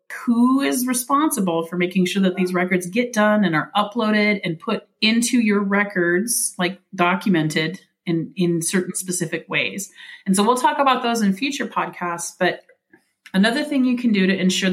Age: 30-49